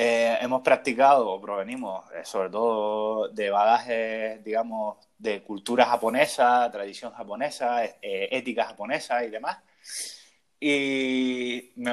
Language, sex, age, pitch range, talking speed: Spanish, male, 20-39, 110-150 Hz, 110 wpm